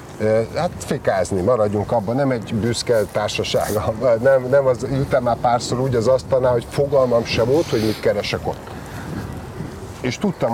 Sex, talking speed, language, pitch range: male, 155 wpm, Hungarian, 115-135 Hz